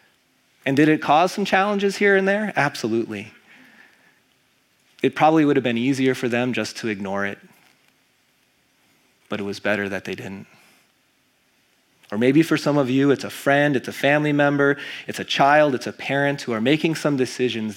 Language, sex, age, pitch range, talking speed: English, male, 30-49, 110-150 Hz, 180 wpm